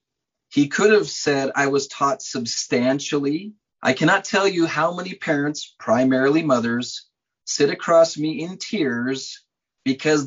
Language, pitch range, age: English, 140-180 Hz, 30-49